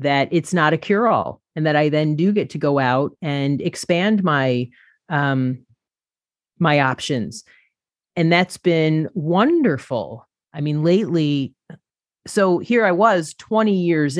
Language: English